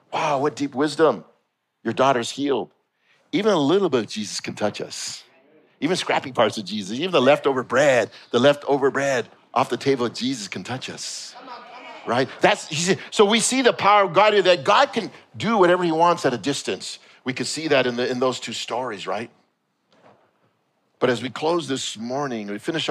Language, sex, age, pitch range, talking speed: English, male, 50-69, 115-180 Hz, 195 wpm